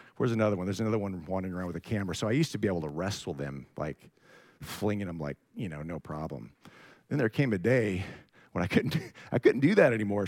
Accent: American